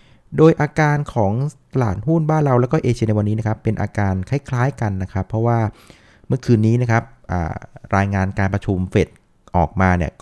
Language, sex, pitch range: Thai, male, 95-120 Hz